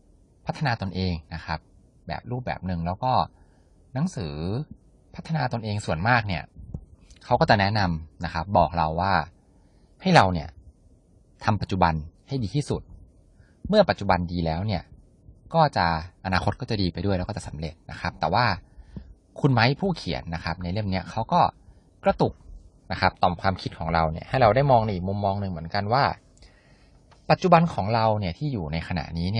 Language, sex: Thai, male